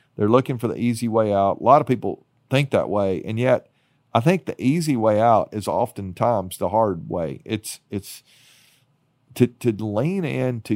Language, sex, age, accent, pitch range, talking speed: English, male, 40-59, American, 105-135 Hz, 185 wpm